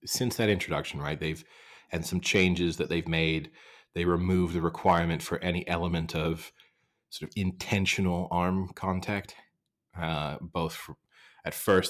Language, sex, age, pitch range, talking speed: English, male, 30-49, 80-90 Hz, 145 wpm